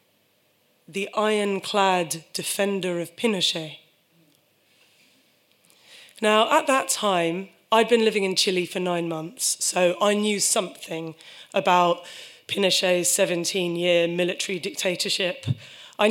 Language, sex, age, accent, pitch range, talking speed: English, female, 20-39, British, 170-215 Hz, 100 wpm